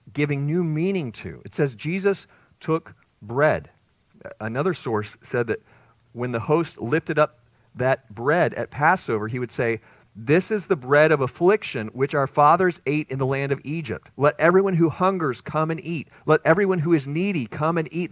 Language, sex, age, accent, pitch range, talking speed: English, male, 40-59, American, 115-155 Hz, 180 wpm